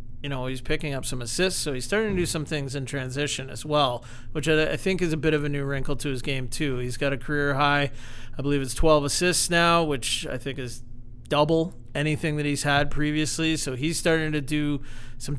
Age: 40-59